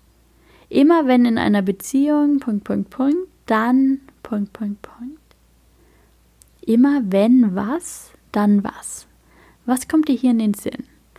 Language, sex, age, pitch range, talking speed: German, female, 10-29, 210-270 Hz, 135 wpm